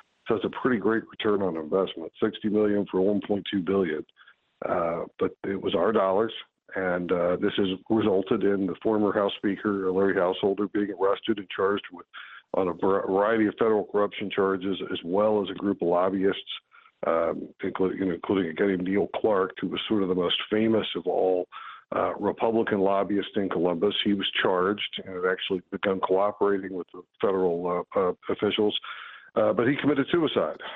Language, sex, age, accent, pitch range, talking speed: English, male, 50-69, American, 95-110 Hz, 175 wpm